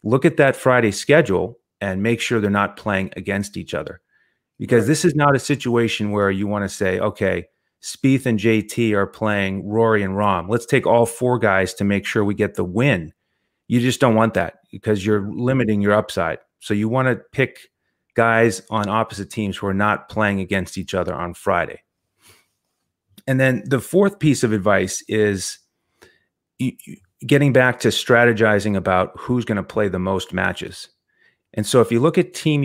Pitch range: 100-125 Hz